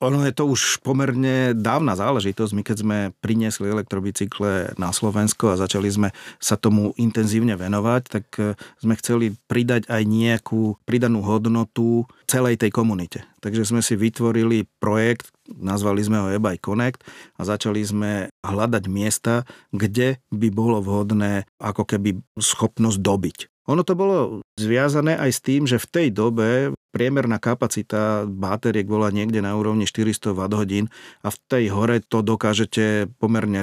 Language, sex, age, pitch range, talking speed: Slovak, male, 40-59, 100-115 Hz, 150 wpm